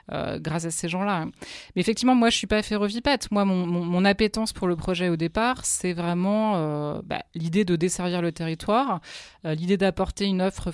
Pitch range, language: 160-205 Hz, French